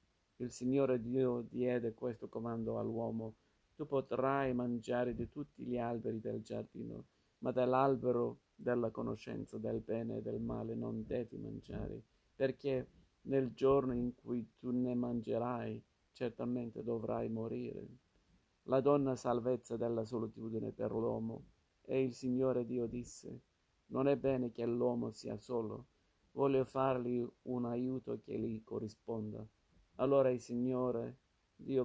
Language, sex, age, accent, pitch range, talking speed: Italian, male, 50-69, native, 115-125 Hz, 130 wpm